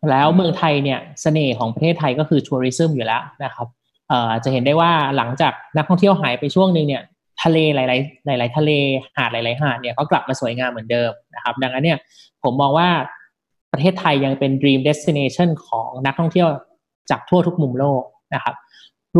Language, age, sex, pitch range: Thai, 20-39, male, 130-165 Hz